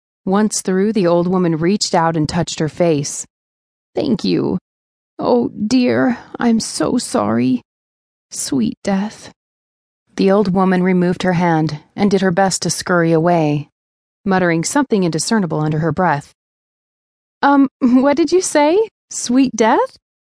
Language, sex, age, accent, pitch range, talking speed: English, female, 30-49, American, 155-220 Hz, 135 wpm